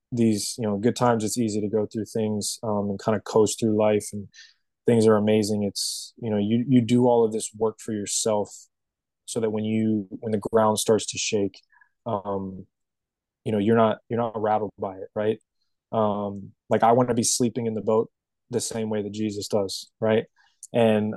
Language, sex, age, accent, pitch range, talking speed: English, male, 20-39, American, 105-115 Hz, 205 wpm